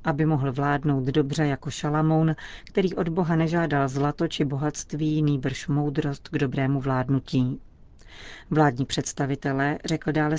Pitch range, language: 140-160 Hz, Czech